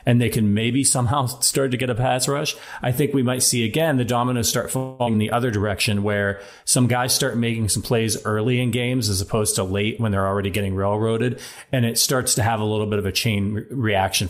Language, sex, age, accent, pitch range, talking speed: English, male, 30-49, American, 105-130 Hz, 240 wpm